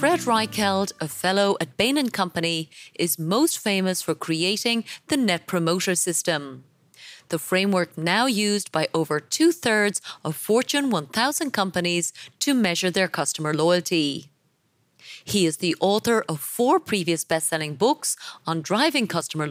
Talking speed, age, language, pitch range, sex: 140 wpm, 30-49, English, 165-230 Hz, female